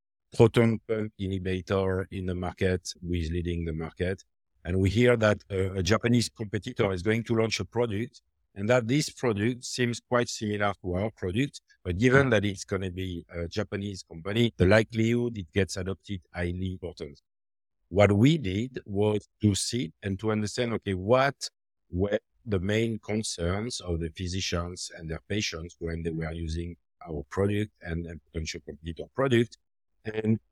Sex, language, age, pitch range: male, English, 50-69, 90-115 Hz